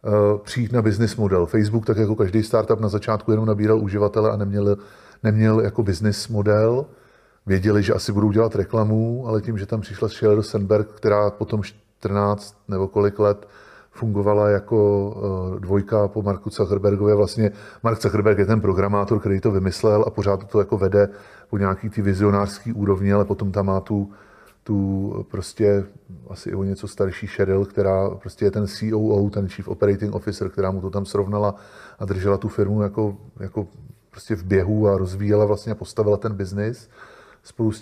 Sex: male